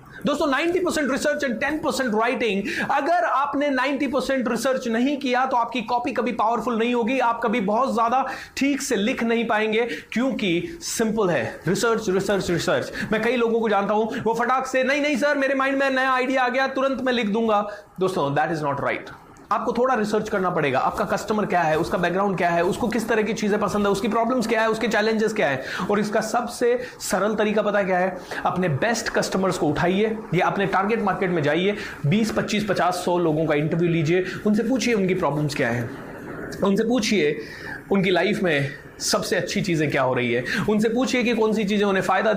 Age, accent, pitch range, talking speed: 30-49, native, 175-240 Hz, 200 wpm